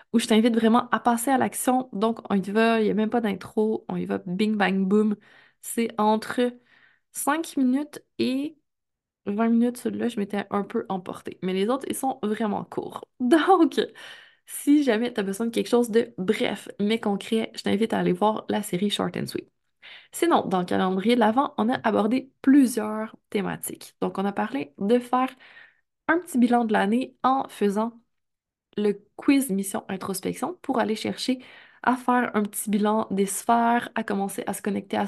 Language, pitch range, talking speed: French, 205-255 Hz, 190 wpm